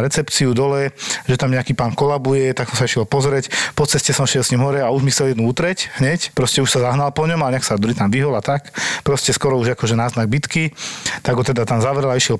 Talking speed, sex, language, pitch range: 250 wpm, male, Slovak, 120-140 Hz